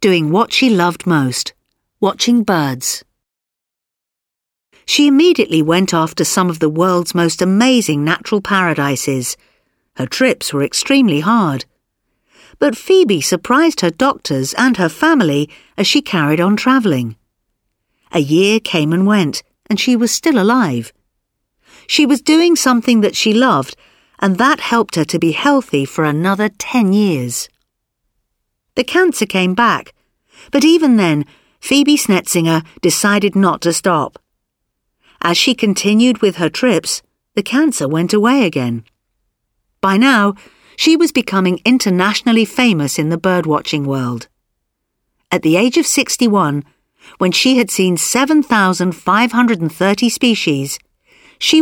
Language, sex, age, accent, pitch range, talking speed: Portuguese, female, 50-69, British, 155-245 Hz, 130 wpm